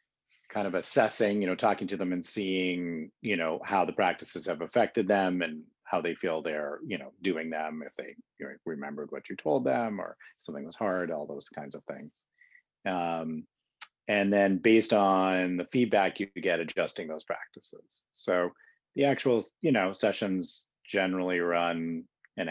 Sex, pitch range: male, 85-105 Hz